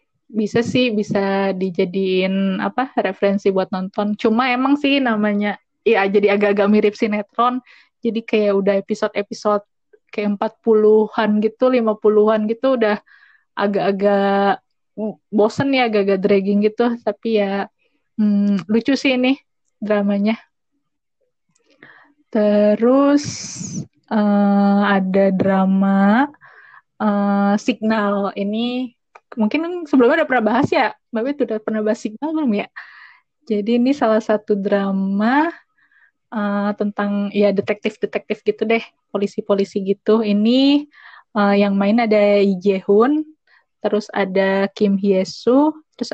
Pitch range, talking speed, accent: 200-230 Hz, 115 wpm, native